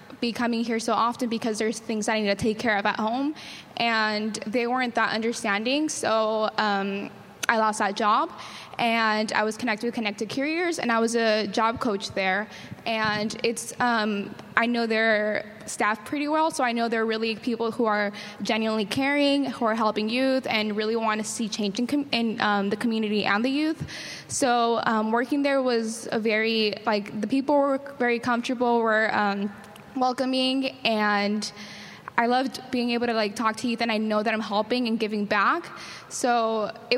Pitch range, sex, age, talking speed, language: 215-240 Hz, female, 10-29, 185 wpm, English